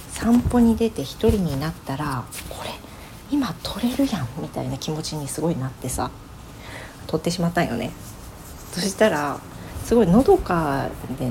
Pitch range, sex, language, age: 135-215 Hz, female, Japanese, 40-59